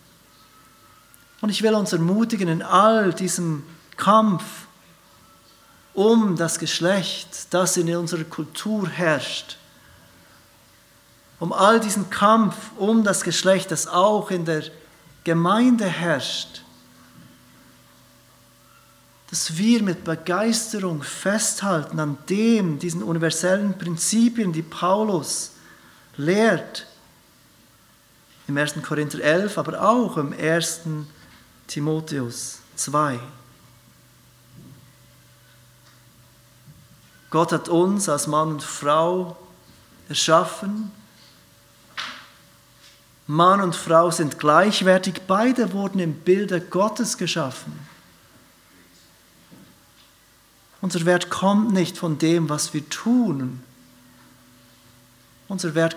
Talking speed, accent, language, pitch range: 90 wpm, German, German, 140-190 Hz